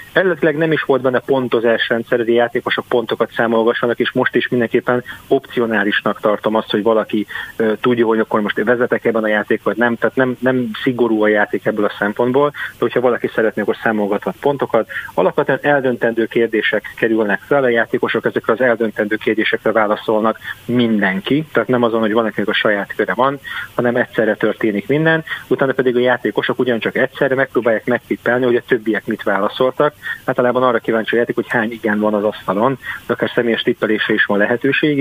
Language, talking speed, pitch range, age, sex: Hungarian, 175 wpm, 110-125 Hz, 30-49, male